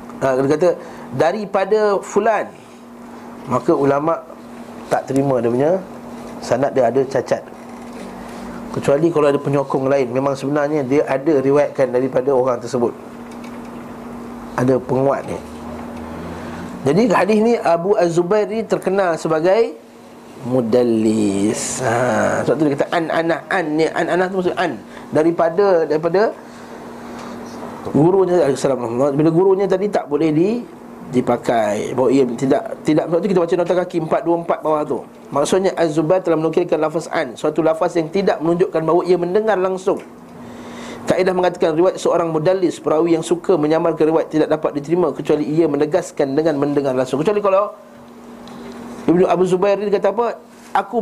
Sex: male